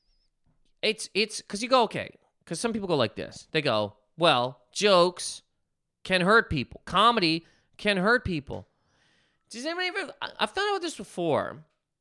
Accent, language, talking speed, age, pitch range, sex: American, English, 155 wpm, 30-49, 170-245 Hz, male